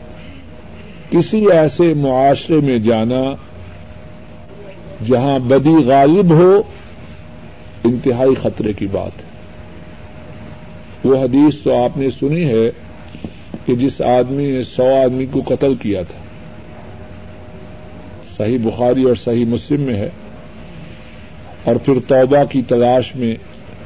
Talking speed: 110 wpm